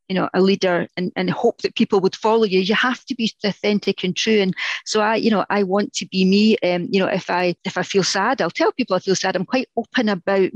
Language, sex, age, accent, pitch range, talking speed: English, female, 40-59, British, 190-220 Hz, 275 wpm